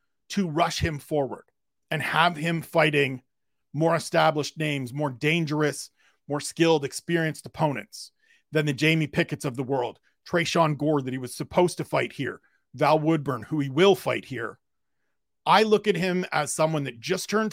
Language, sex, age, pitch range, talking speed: English, male, 40-59, 150-185 Hz, 170 wpm